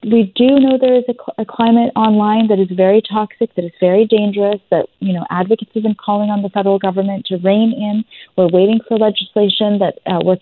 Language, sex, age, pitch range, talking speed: English, female, 30-49, 190-235 Hz, 225 wpm